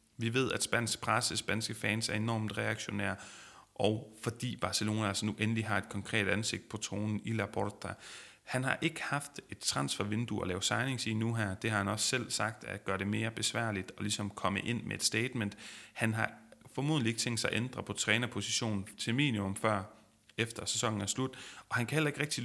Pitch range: 105-120 Hz